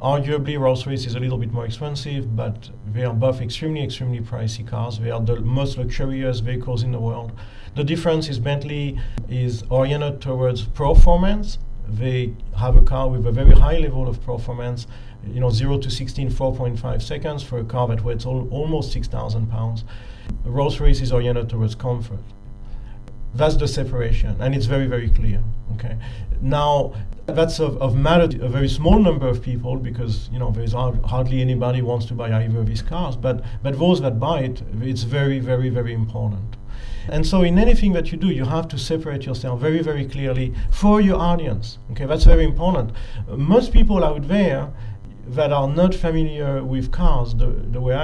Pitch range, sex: 120-150 Hz, male